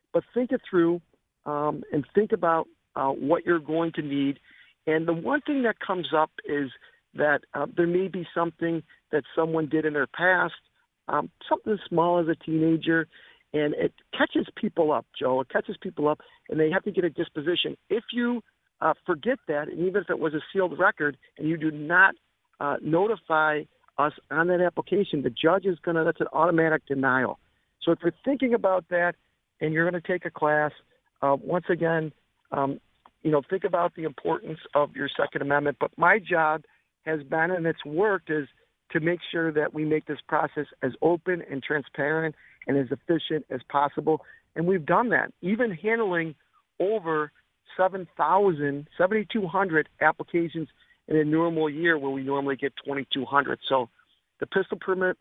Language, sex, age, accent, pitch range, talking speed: English, male, 50-69, American, 150-185 Hz, 180 wpm